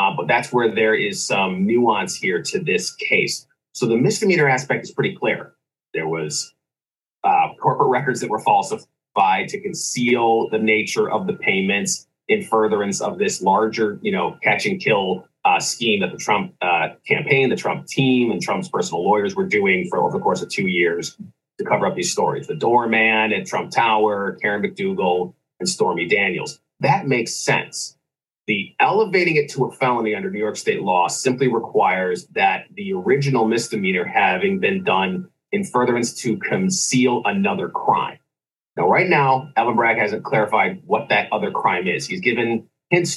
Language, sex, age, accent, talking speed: English, male, 30-49, American, 175 wpm